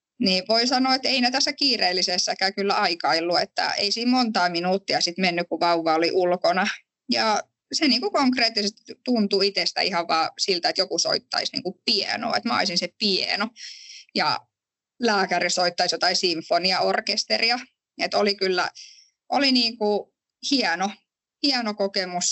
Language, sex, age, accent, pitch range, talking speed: English, female, 10-29, Finnish, 180-240 Hz, 130 wpm